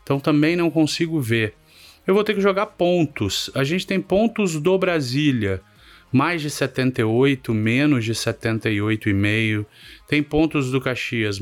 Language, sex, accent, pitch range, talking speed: Portuguese, male, Brazilian, 110-140 Hz, 140 wpm